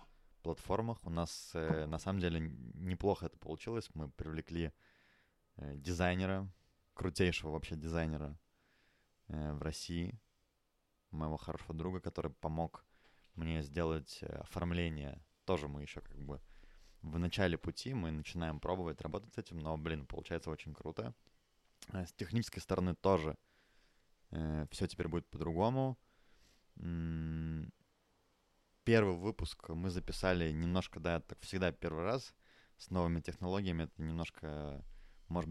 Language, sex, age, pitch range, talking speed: Russian, male, 20-39, 80-95 Hz, 115 wpm